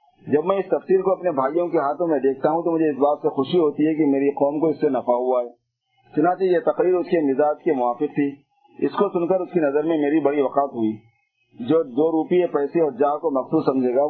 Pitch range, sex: 135-170 Hz, male